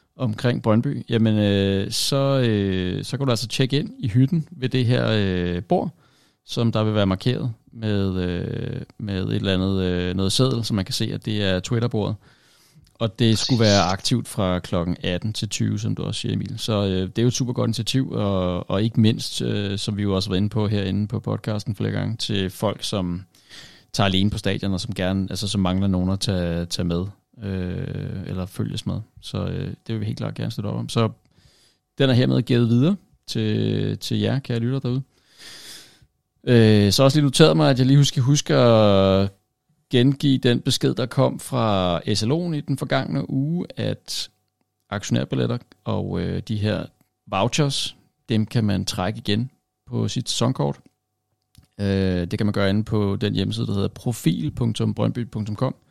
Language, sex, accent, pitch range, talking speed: Danish, male, native, 95-125 Hz, 190 wpm